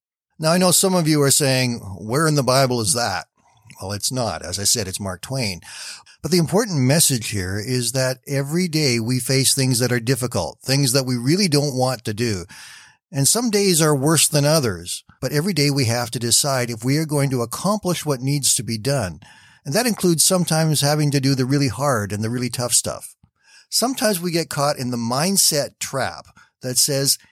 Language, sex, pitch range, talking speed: English, male, 120-155 Hz, 210 wpm